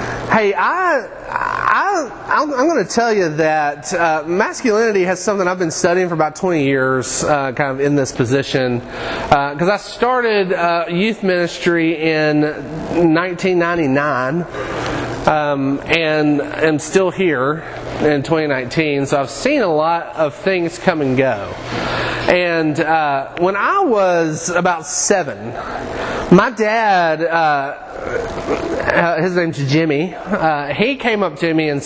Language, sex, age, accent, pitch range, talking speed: English, male, 30-49, American, 145-180 Hz, 140 wpm